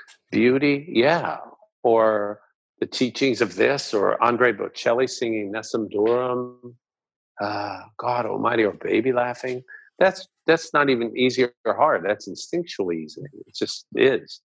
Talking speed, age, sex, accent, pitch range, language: 130 wpm, 50-69, male, American, 115-140 Hz, English